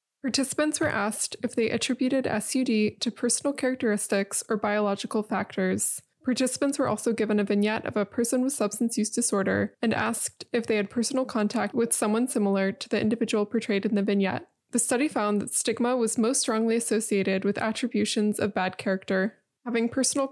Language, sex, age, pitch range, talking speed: English, female, 20-39, 210-245 Hz, 175 wpm